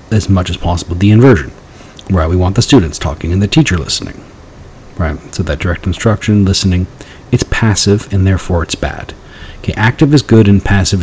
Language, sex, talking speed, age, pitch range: English, male, 185 wpm, 40-59, 85-105 Hz